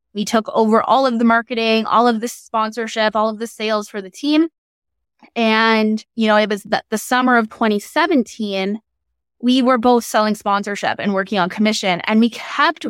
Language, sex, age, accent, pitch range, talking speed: English, female, 20-39, American, 210-250 Hz, 185 wpm